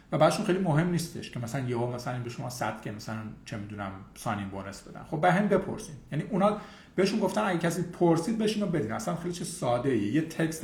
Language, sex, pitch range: Persian, male, 120-180 Hz